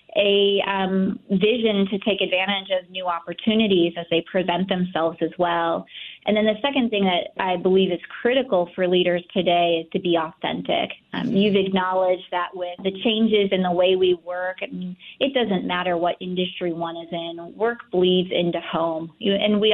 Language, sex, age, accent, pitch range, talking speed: English, female, 20-39, American, 175-195 Hz, 175 wpm